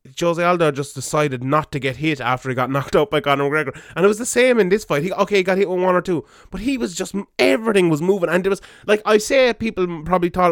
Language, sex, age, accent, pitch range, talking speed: English, male, 20-39, Irish, 150-180 Hz, 280 wpm